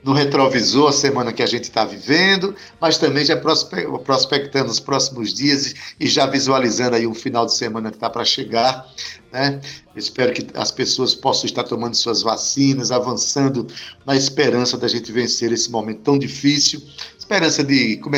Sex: male